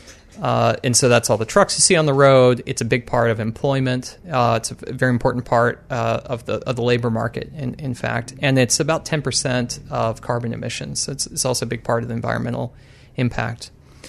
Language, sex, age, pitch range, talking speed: English, male, 30-49, 115-145 Hz, 225 wpm